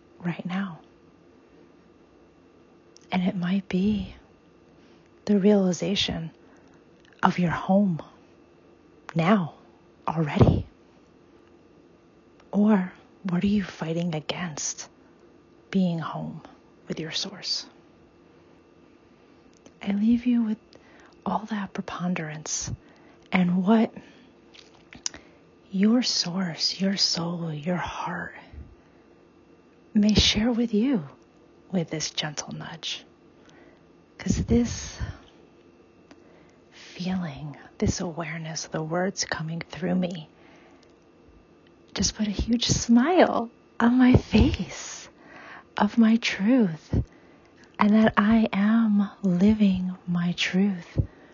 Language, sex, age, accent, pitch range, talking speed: English, female, 30-49, American, 170-210 Hz, 90 wpm